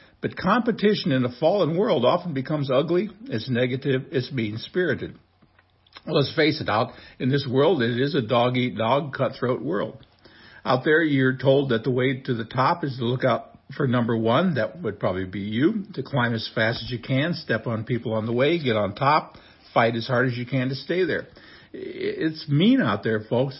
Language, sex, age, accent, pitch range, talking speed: English, male, 60-79, American, 115-145 Hz, 200 wpm